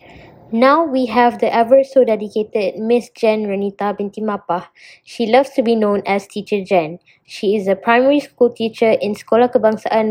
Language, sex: English, female